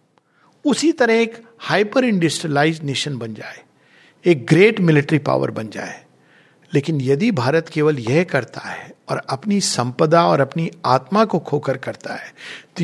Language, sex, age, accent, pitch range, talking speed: Hindi, male, 50-69, native, 145-195 Hz, 150 wpm